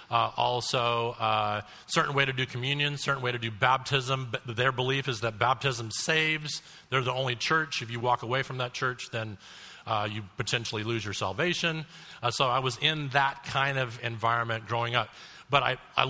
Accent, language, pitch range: American, English, 120-145 Hz